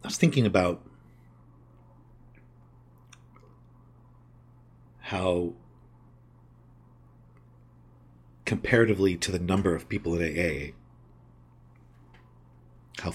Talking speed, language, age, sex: 65 wpm, English, 50-69, male